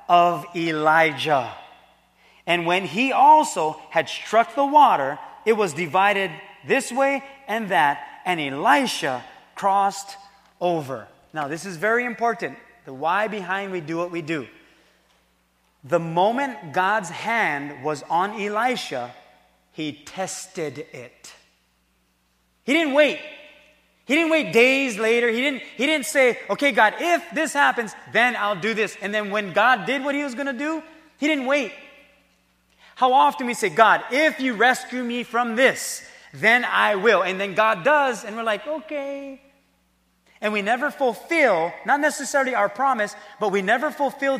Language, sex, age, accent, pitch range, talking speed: English, male, 30-49, American, 180-275 Hz, 155 wpm